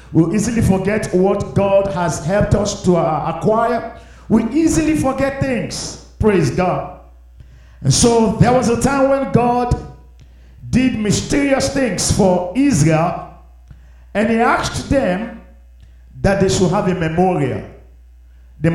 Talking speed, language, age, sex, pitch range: 140 wpm, English, 50-69, male, 145-220 Hz